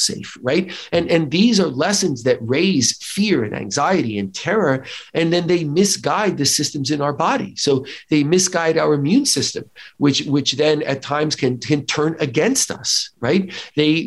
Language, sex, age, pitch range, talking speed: English, male, 40-59, 130-175 Hz, 175 wpm